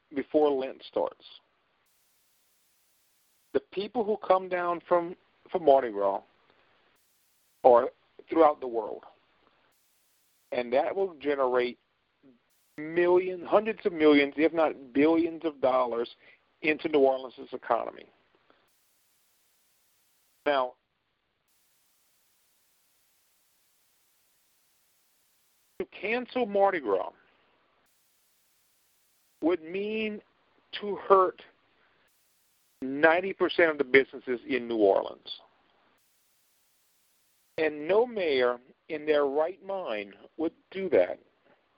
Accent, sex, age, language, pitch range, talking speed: American, male, 50-69, English, 135-185 Hz, 85 wpm